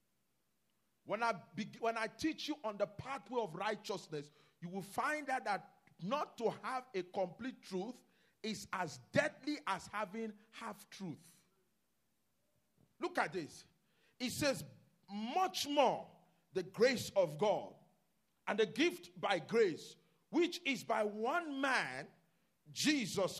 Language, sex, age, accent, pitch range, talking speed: English, male, 40-59, Nigerian, 200-285 Hz, 130 wpm